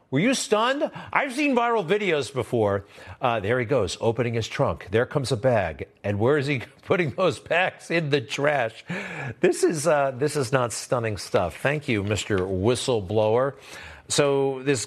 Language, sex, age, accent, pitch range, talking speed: English, male, 50-69, American, 110-150 Hz, 175 wpm